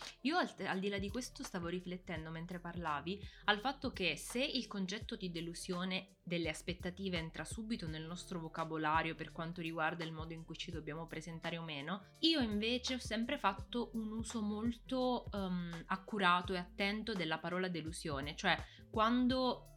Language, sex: Italian, female